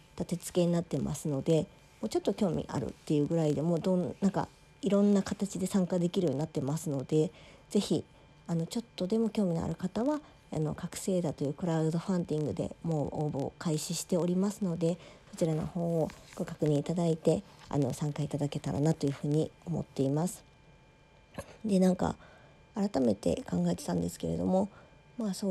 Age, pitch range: 50-69, 150-185 Hz